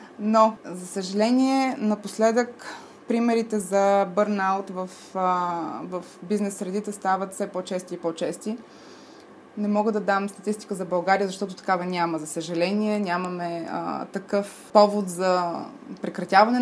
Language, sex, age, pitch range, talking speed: Bulgarian, female, 20-39, 185-215 Hz, 120 wpm